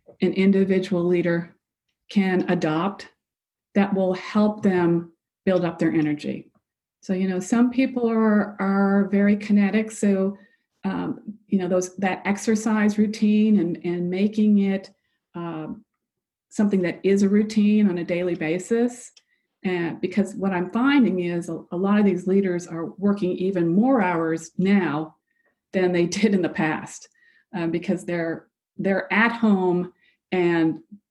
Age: 50-69